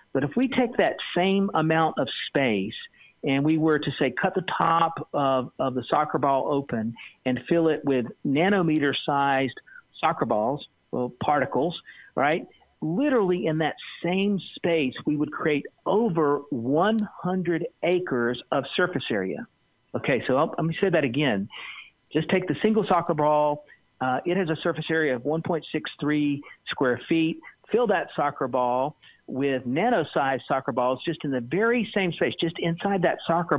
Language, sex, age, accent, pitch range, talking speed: English, male, 50-69, American, 140-170 Hz, 155 wpm